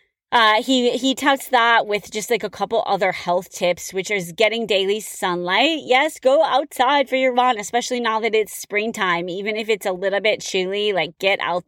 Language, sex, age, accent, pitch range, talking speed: English, female, 20-39, American, 185-230 Hz, 200 wpm